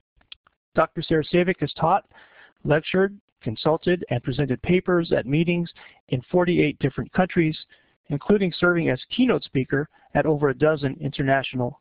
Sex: male